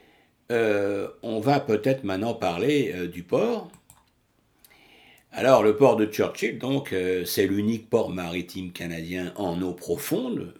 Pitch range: 85-105 Hz